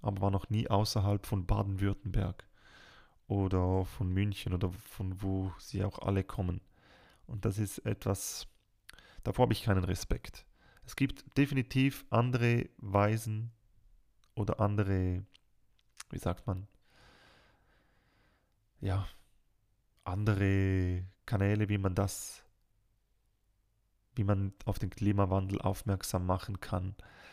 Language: German